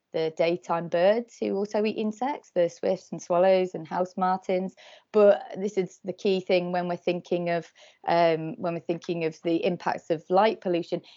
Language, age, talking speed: English, 30-49, 185 wpm